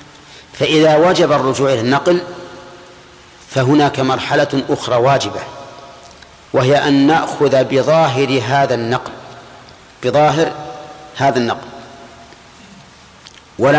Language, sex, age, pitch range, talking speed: Arabic, male, 40-59, 125-145 Hz, 80 wpm